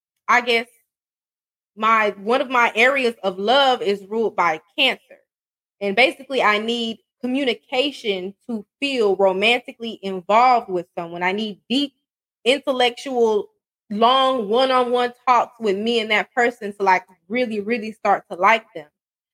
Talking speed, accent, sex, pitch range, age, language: 145 wpm, American, female, 205-255 Hz, 20-39, English